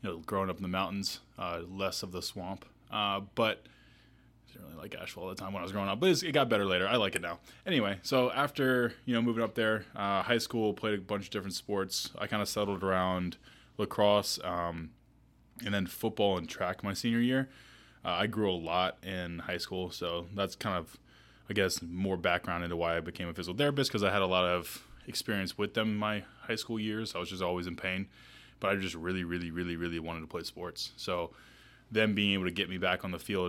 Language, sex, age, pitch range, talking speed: English, male, 20-39, 90-110 Hz, 245 wpm